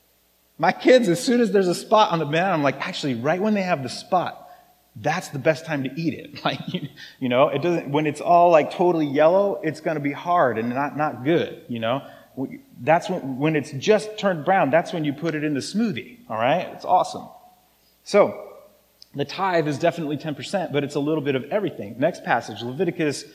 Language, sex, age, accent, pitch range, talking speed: English, male, 30-49, American, 145-195 Hz, 215 wpm